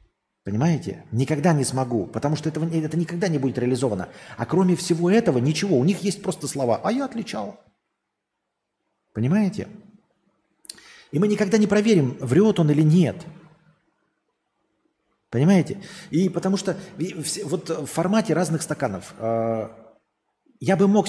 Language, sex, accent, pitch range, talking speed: Russian, male, native, 120-180 Hz, 140 wpm